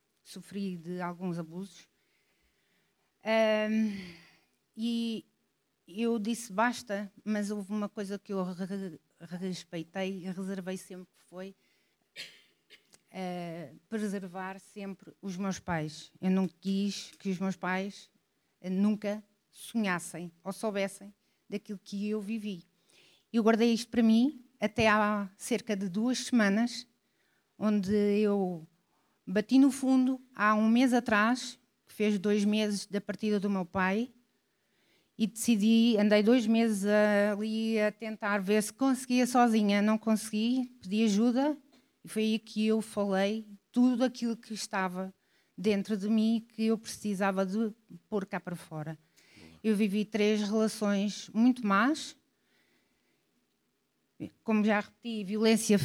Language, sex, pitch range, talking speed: Portuguese, female, 195-225 Hz, 125 wpm